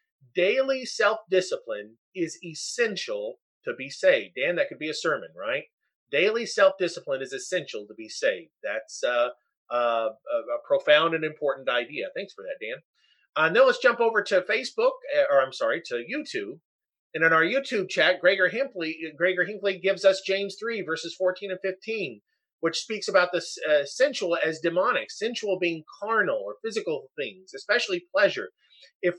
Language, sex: English, male